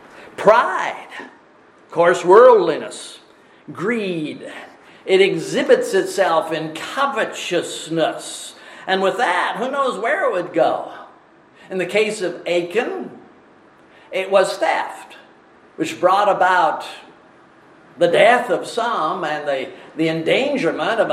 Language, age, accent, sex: English, 50-69, American, male